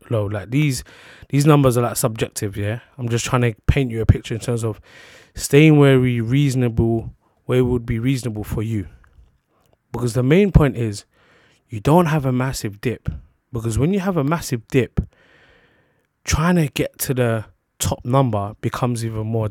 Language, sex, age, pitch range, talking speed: English, male, 20-39, 110-130 Hz, 180 wpm